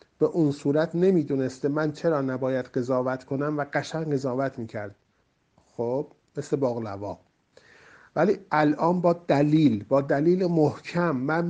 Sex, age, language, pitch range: male, 50-69, Persian, 130-165 Hz